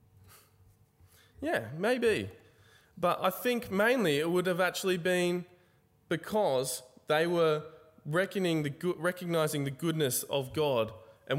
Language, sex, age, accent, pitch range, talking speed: English, male, 20-39, Australian, 120-165 Hz, 105 wpm